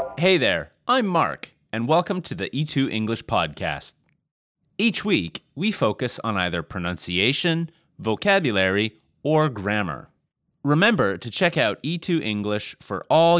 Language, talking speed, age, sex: English, 120 wpm, 30-49, male